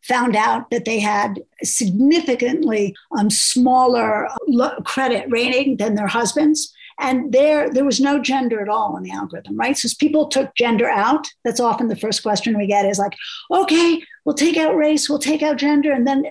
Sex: female